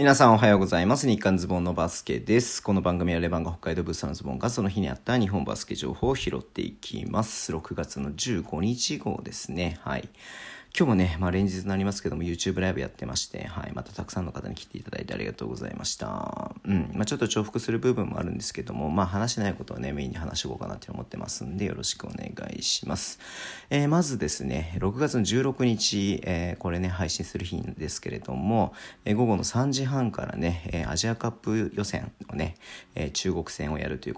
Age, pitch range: 40-59, 90-110 Hz